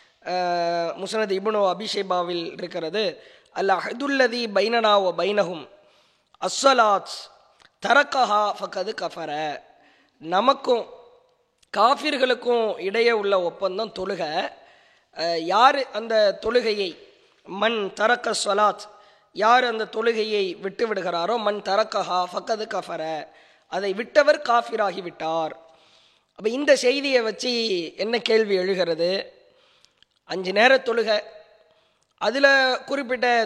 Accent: Indian